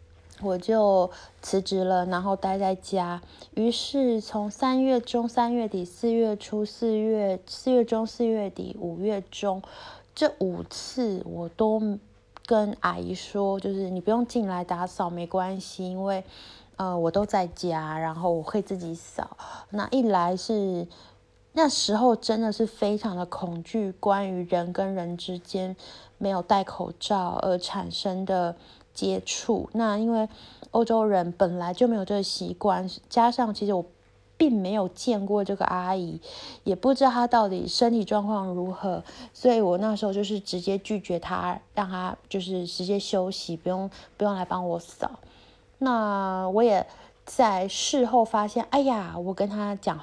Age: 20-39